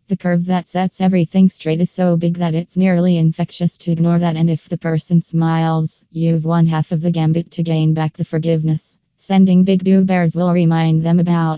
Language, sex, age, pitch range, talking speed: English, female, 20-39, 165-175 Hz, 205 wpm